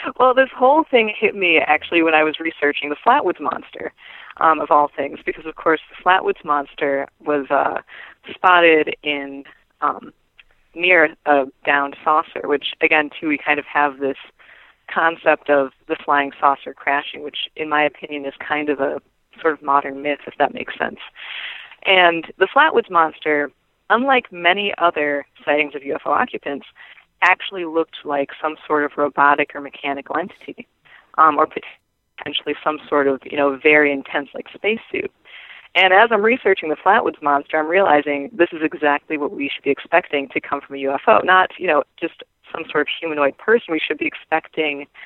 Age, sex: 20-39, female